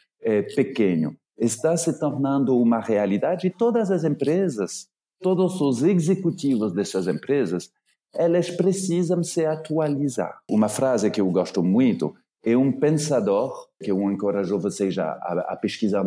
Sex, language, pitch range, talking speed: male, Portuguese, 115-180 Hz, 135 wpm